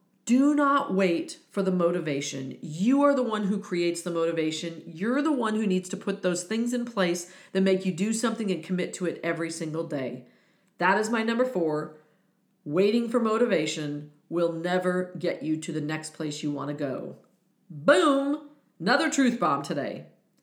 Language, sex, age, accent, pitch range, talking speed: English, female, 40-59, American, 175-245 Hz, 180 wpm